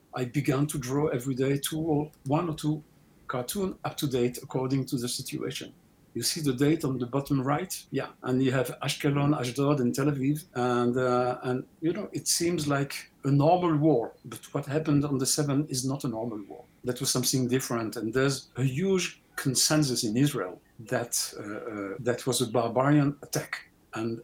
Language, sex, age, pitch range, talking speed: English, male, 50-69, 125-150 Hz, 195 wpm